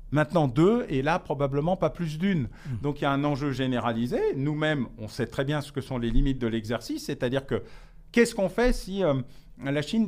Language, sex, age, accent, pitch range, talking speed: French, male, 40-59, French, 130-170 Hz, 215 wpm